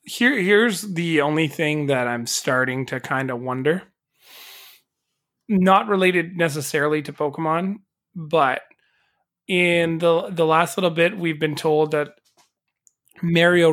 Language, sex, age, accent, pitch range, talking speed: English, male, 30-49, American, 145-185 Hz, 120 wpm